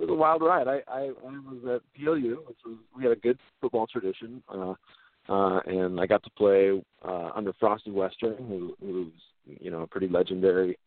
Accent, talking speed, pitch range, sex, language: American, 205 wpm, 90-115 Hz, male, English